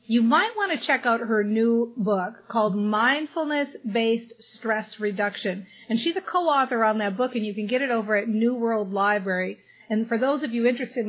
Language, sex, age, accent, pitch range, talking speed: English, female, 40-59, American, 215-255 Hz, 200 wpm